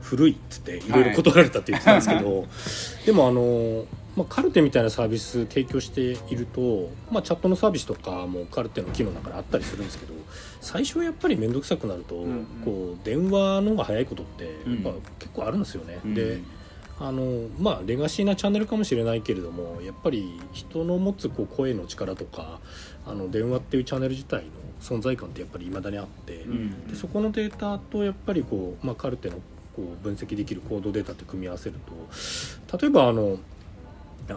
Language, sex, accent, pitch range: Japanese, male, native, 95-145 Hz